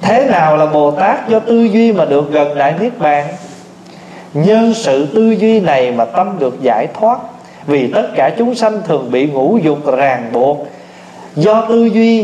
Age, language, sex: 20-39, Vietnamese, male